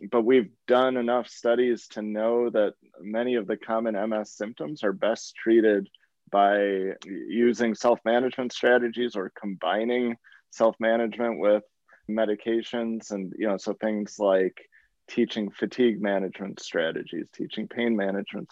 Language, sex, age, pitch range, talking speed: English, male, 20-39, 105-120 Hz, 125 wpm